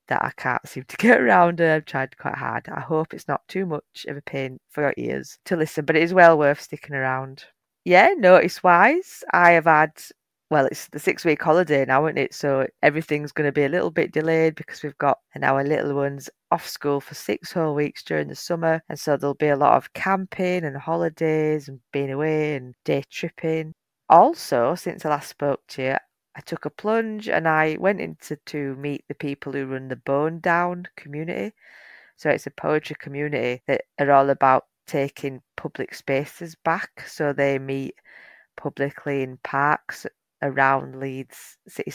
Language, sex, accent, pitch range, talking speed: English, female, British, 135-160 Hz, 195 wpm